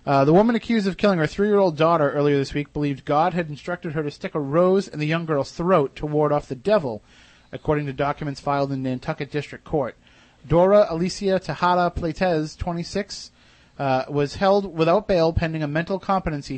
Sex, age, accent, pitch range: male, 30-49, American, 140-180 Hz